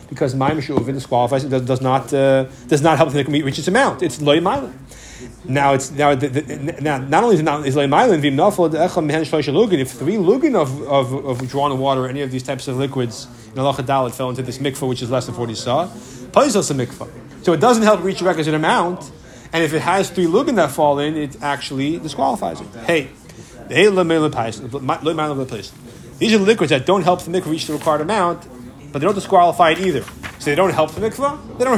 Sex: male